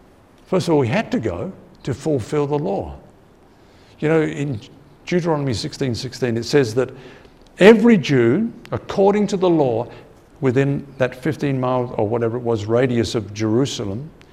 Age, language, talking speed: 60-79, English, 160 wpm